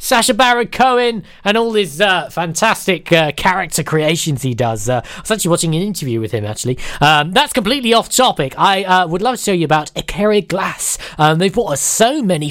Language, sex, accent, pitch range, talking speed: English, male, British, 150-210 Hz, 210 wpm